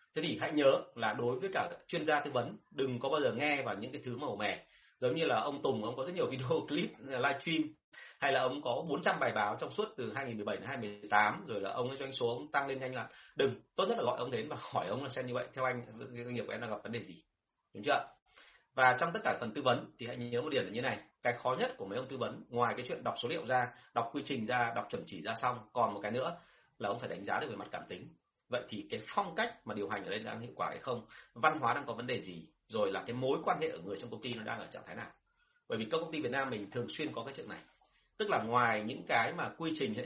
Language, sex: Vietnamese, male